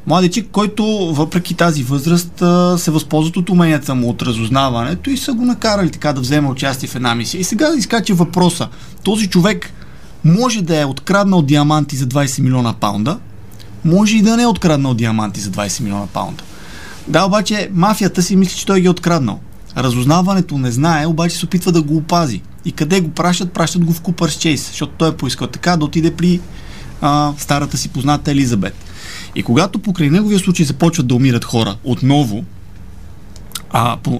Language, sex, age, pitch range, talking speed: Bulgarian, male, 20-39, 125-175 Hz, 180 wpm